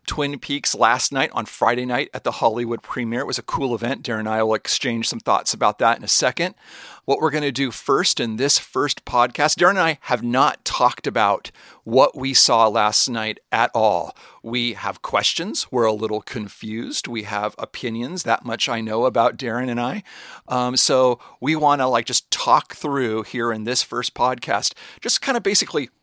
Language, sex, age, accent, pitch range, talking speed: English, male, 40-59, American, 115-140 Hz, 205 wpm